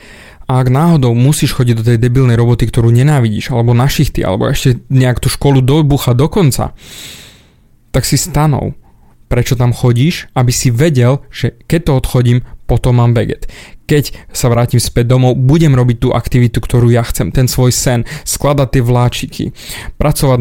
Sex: male